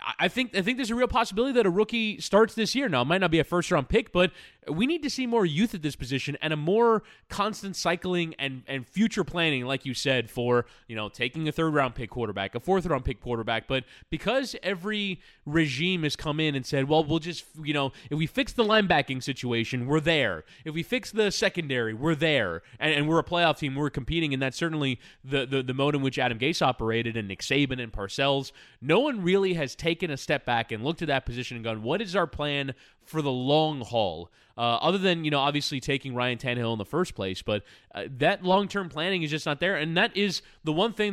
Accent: American